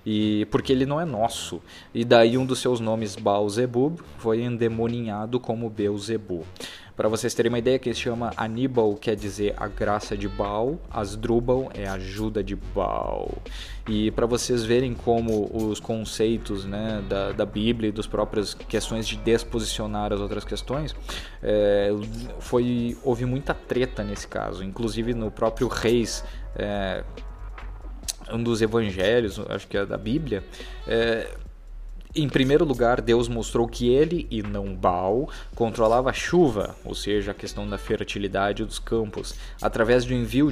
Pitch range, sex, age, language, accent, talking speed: 105-120 Hz, male, 20-39, Portuguese, Brazilian, 150 wpm